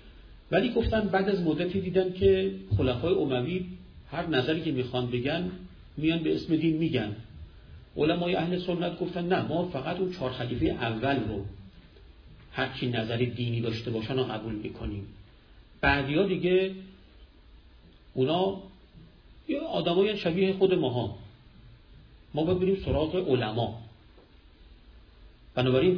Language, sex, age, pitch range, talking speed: Persian, male, 50-69, 100-165 Hz, 120 wpm